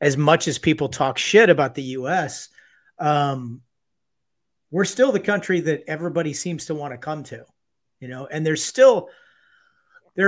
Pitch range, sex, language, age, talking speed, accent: 140-180 Hz, male, English, 40-59, 165 wpm, American